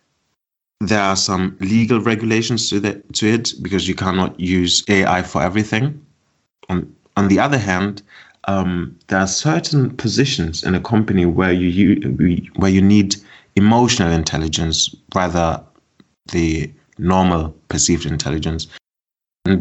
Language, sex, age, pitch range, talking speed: English, male, 30-49, 85-105 Hz, 135 wpm